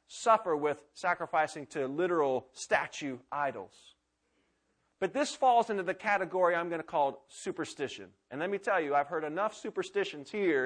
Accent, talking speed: American, 160 wpm